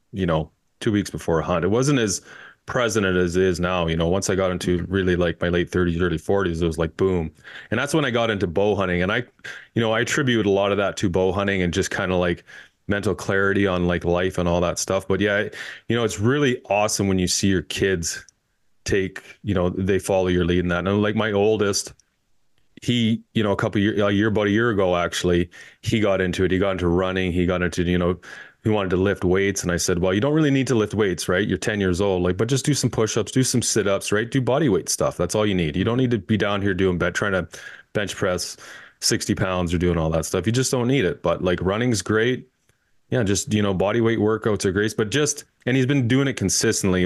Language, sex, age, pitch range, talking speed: English, male, 30-49, 90-110 Hz, 260 wpm